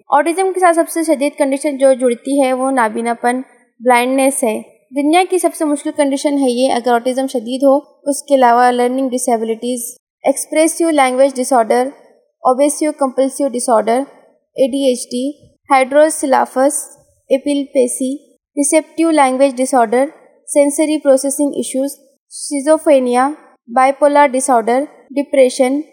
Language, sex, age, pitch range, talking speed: Urdu, female, 20-39, 255-295 Hz, 95 wpm